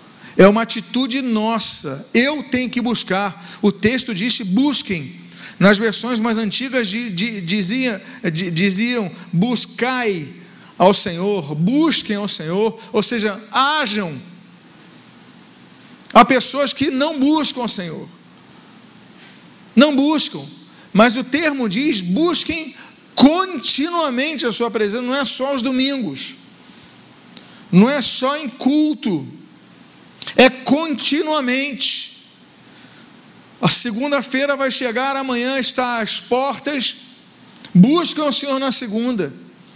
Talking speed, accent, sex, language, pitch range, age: 105 wpm, Brazilian, male, Portuguese, 215-270 Hz, 50-69